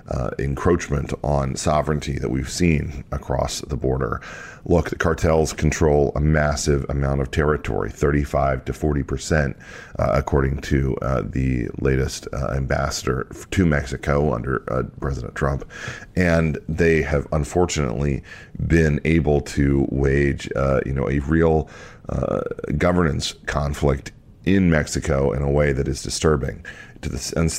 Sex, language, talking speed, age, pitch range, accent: male, English, 135 wpm, 40-59, 70-80 Hz, American